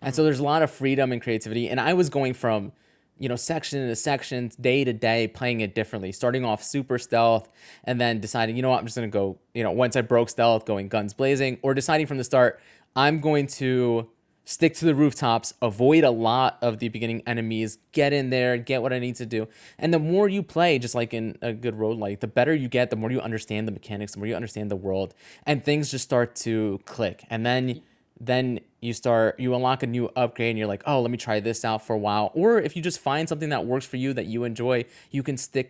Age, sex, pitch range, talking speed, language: 20-39, male, 110-130 Hz, 250 wpm, English